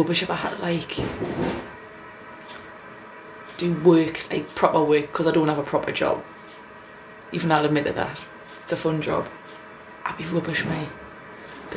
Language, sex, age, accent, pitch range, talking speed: English, female, 20-39, British, 155-170 Hz, 155 wpm